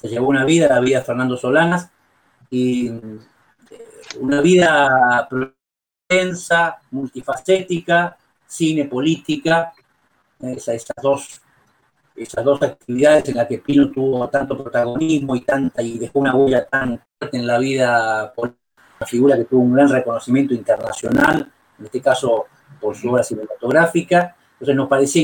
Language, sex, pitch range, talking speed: Spanish, male, 130-170 Hz, 140 wpm